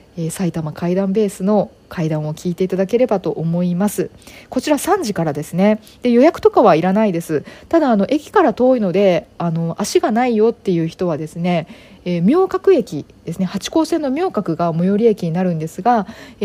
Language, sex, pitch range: Japanese, female, 165-220 Hz